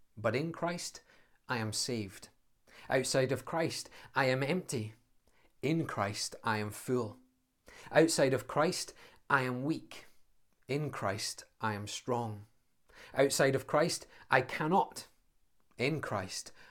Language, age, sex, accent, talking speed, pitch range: English, 30-49, male, British, 125 wpm, 110-130 Hz